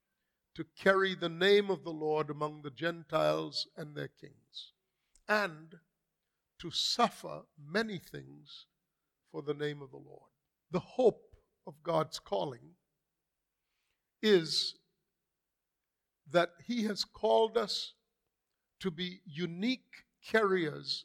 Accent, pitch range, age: American, 160-205 Hz, 50-69